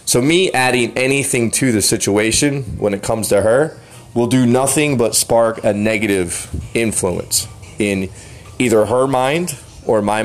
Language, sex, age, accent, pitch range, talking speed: English, male, 30-49, American, 105-135 Hz, 150 wpm